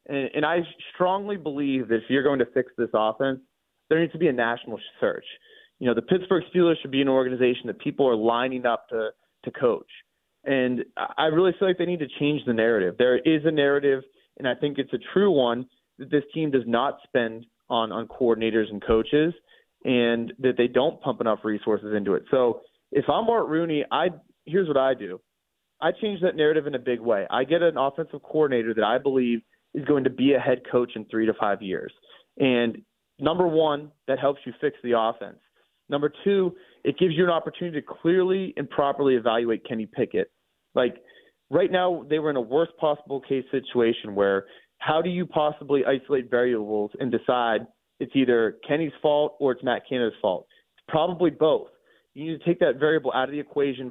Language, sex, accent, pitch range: English, male, American, 125-170 Hz